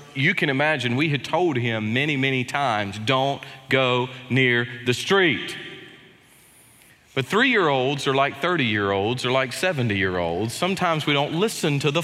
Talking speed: 145 wpm